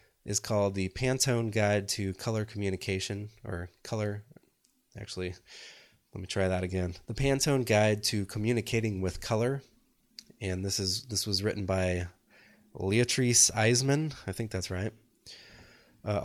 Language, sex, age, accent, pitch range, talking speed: English, male, 20-39, American, 95-115 Hz, 135 wpm